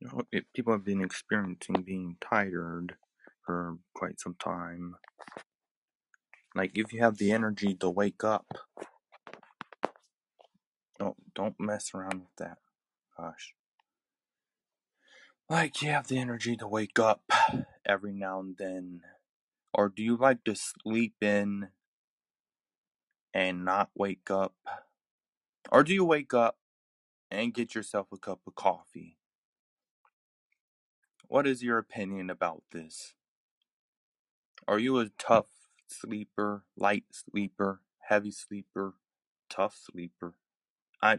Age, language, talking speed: 20-39, English, 115 wpm